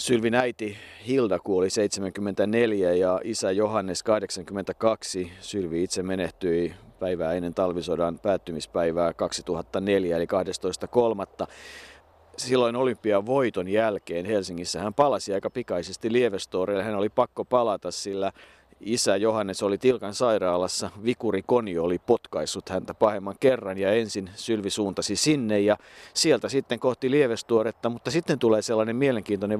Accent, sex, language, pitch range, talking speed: native, male, Finnish, 100-125 Hz, 120 wpm